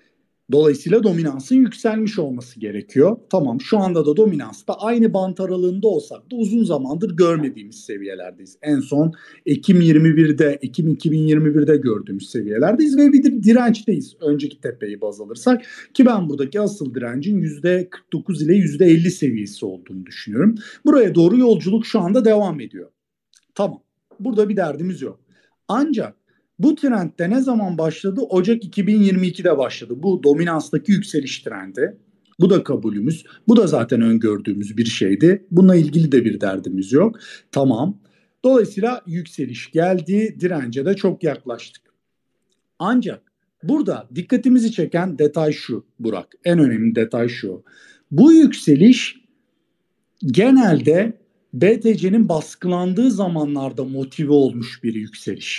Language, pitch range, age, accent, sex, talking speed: Turkish, 145-220 Hz, 50-69, native, male, 125 wpm